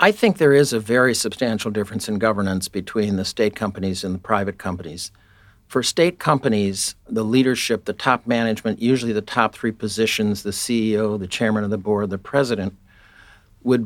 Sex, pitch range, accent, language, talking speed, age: male, 100-115 Hz, American, English, 180 wpm, 60-79